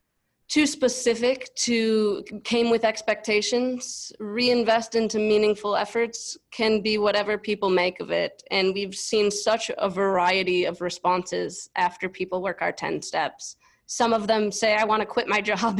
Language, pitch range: English, 200-225 Hz